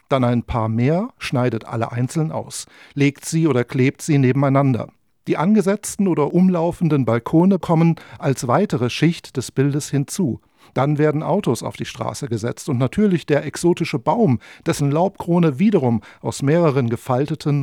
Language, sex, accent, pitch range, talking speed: English, male, German, 130-175 Hz, 150 wpm